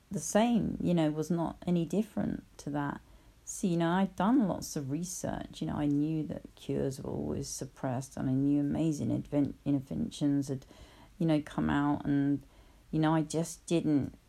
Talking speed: 190 wpm